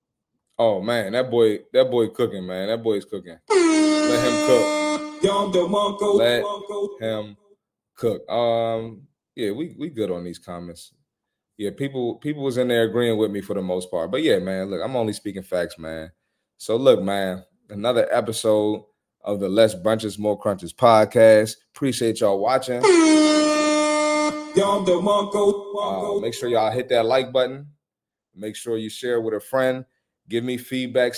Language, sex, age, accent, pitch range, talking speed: English, male, 20-39, American, 105-130 Hz, 155 wpm